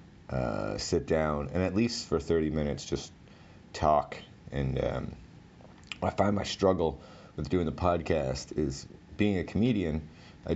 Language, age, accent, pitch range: English, 30-49, American, 75-95 Hz